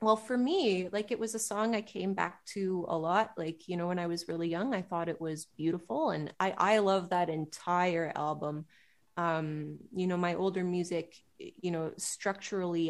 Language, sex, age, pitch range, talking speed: English, female, 20-39, 165-195 Hz, 200 wpm